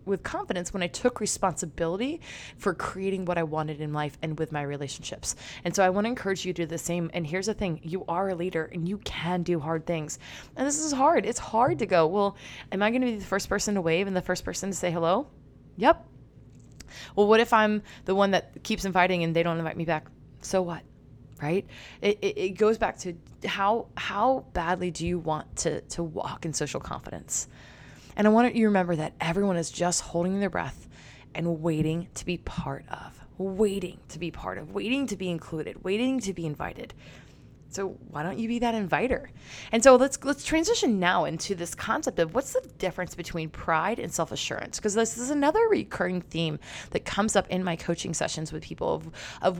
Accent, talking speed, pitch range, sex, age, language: American, 215 wpm, 165-215 Hz, female, 20-39, English